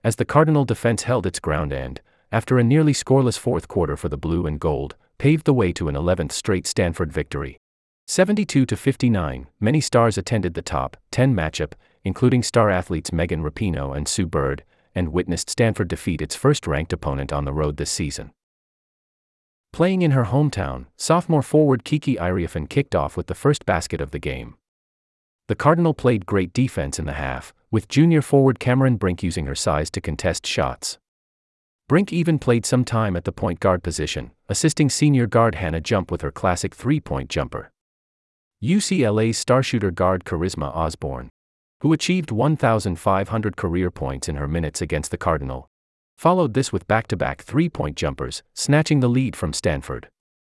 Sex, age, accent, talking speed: male, 30-49, American, 170 wpm